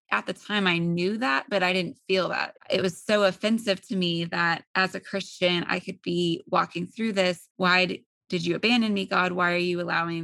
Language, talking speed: English, 225 wpm